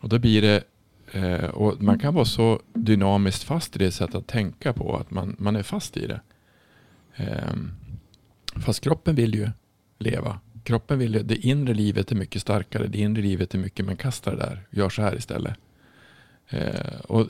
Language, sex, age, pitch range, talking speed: Swedish, male, 50-69, 100-120 Hz, 180 wpm